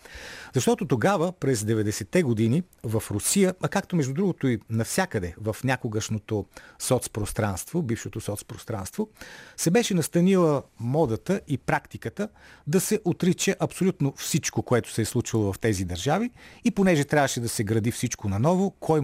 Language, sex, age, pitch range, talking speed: Bulgarian, male, 40-59, 110-175 Hz, 140 wpm